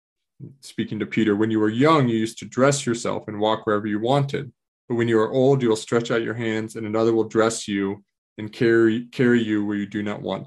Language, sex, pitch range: English, male, 105-130 Hz